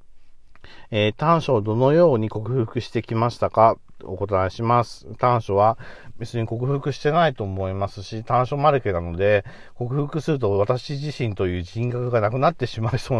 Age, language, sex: 40-59, Japanese, male